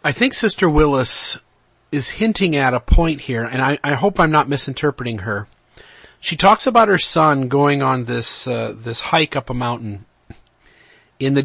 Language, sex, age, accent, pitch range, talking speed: English, male, 40-59, American, 120-155 Hz, 175 wpm